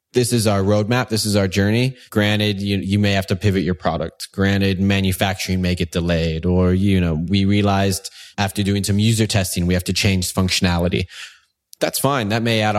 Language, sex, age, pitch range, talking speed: English, male, 20-39, 95-110 Hz, 195 wpm